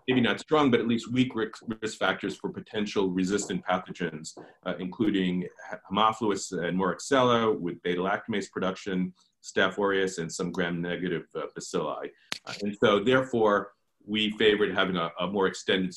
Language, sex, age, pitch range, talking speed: English, male, 40-59, 95-120 Hz, 145 wpm